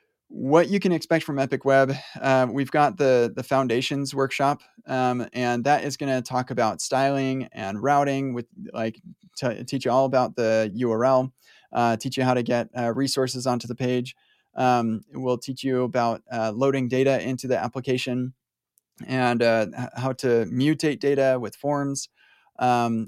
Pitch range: 120-135 Hz